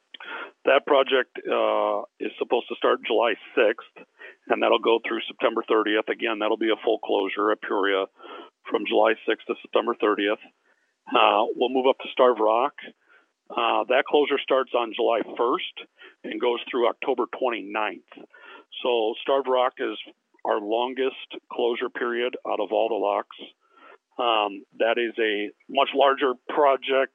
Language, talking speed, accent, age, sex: English, 150 wpm, American, 50-69, male